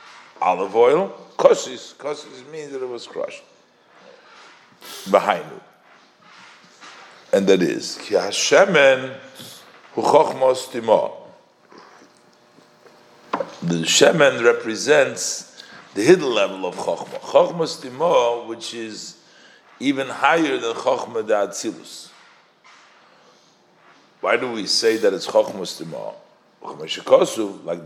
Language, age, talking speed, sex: English, 50-69, 85 wpm, male